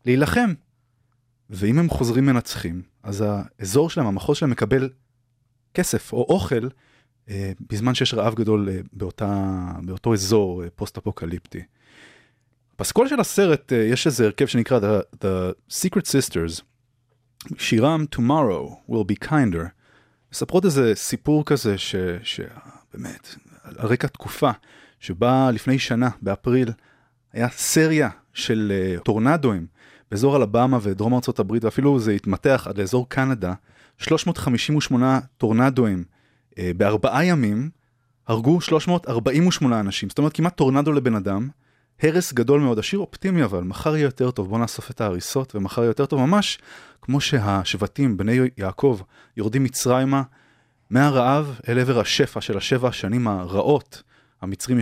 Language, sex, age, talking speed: Hebrew, male, 30-49, 125 wpm